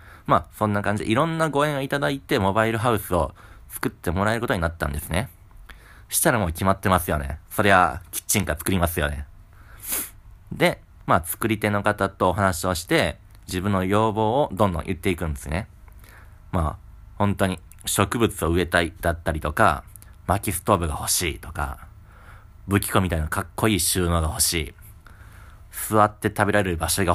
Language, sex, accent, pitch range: Japanese, male, native, 85-105 Hz